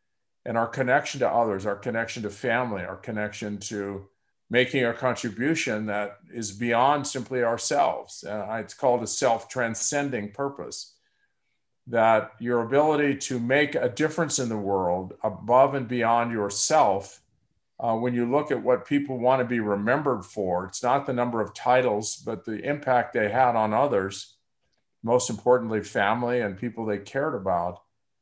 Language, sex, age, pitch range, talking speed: English, male, 50-69, 110-130 Hz, 155 wpm